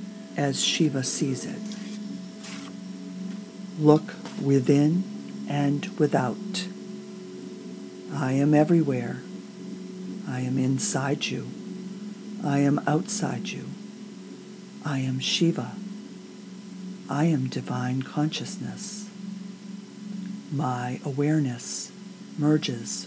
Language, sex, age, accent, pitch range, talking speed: English, female, 50-69, American, 140-200 Hz, 75 wpm